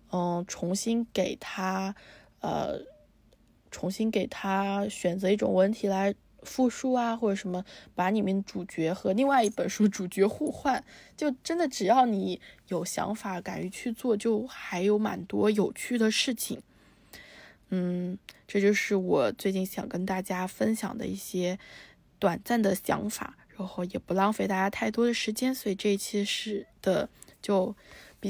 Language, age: Chinese, 20-39